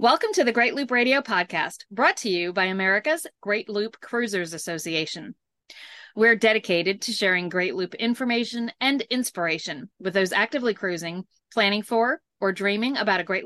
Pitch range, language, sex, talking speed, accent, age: 190-235 Hz, English, female, 160 wpm, American, 40-59